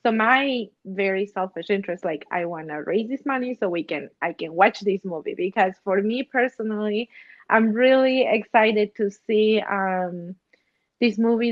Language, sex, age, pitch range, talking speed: English, female, 20-39, 190-220 Hz, 165 wpm